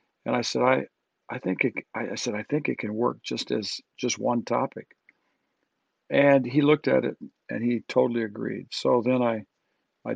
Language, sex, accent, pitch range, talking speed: English, male, American, 120-145 Hz, 190 wpm